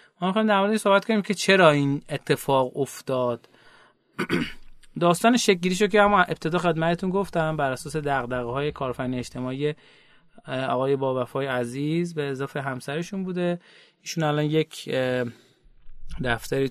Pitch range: 130-170 Hz